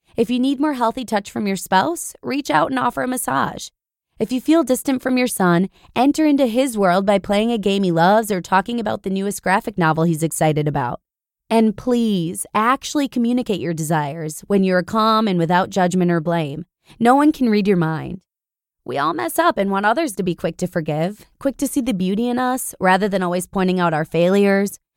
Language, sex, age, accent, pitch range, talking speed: English, female, 20-39, American, 180-245 Hz, 210 wpm